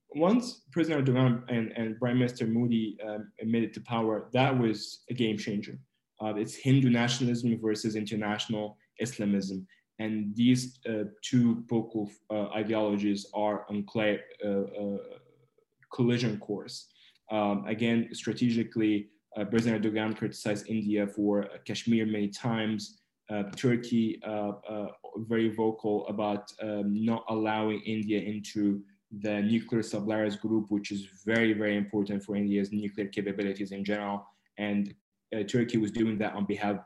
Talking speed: 140 wpm